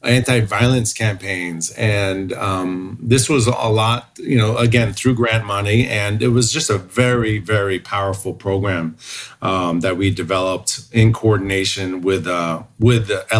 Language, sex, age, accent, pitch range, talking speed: English, male, 40-59, American, 95-120 Hz, 150 wpm